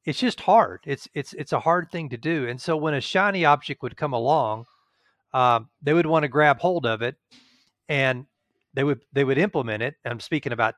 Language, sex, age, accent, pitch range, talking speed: English, male, 40-59, American, 120-155 Hz, 225 wpm